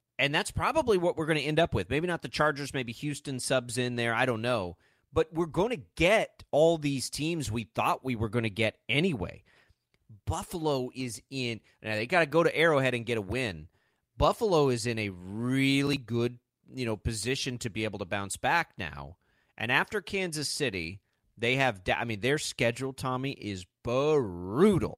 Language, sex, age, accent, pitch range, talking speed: English, male, 30-49, American, 115-155 Hz, 195 wpm